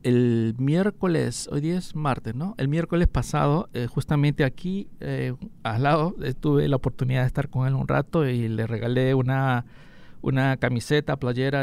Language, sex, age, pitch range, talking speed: English, male, 50-69, 130-155 Hz, 170 wpm